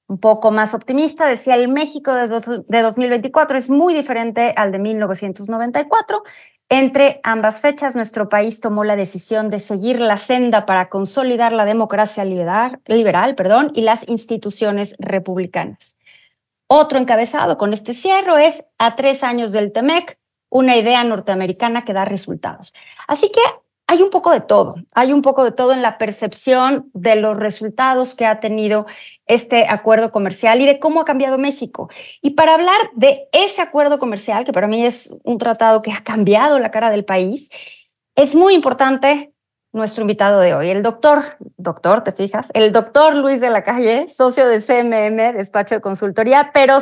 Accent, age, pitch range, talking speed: Mexican, 30-49, 215-275 Hz, 165 wpm